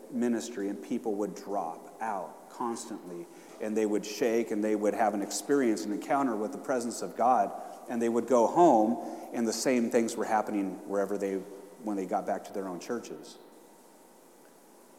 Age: 30-49